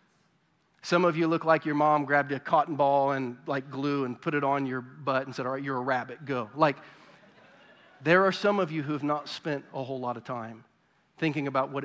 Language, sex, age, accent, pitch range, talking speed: English, male, 40-59, American, 135-180 Hz, 235 wpm